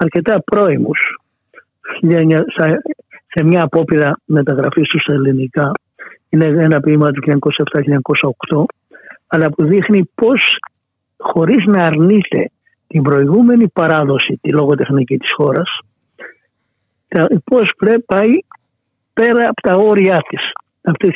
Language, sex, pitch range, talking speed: Greek, male, 145-195 Hz, 105 wpm